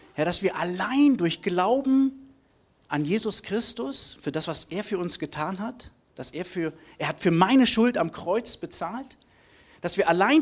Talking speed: 180 wpm